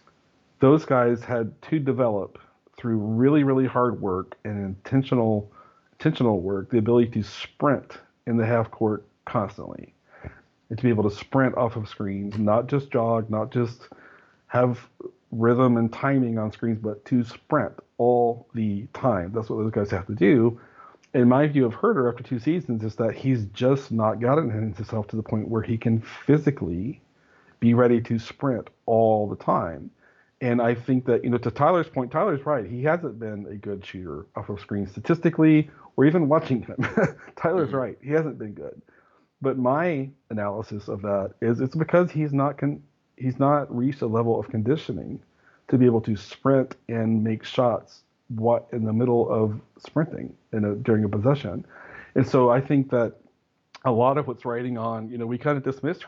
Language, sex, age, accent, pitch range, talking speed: English, male, 40-59, American, 110-135 Hz, 180 wpm